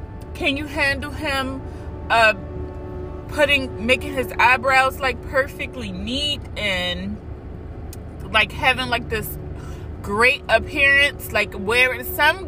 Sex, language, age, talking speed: female, English, 30-49, 105 wpm